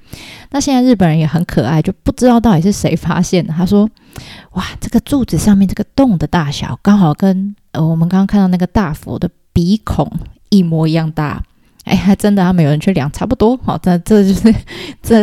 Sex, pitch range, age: female, 170-215 Hz, 20-39